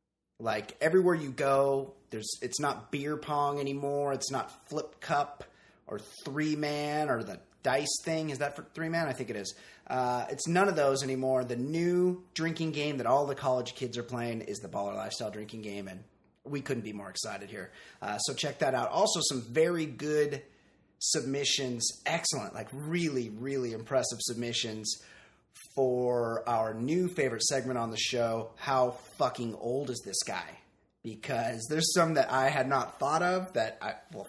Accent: American